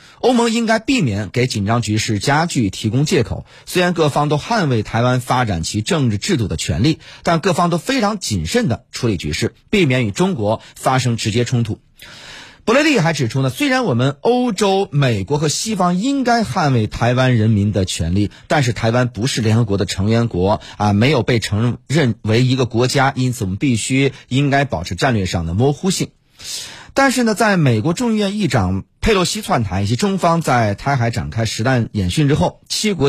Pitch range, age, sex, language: 105-155 Hz, 30-49, male, Chinese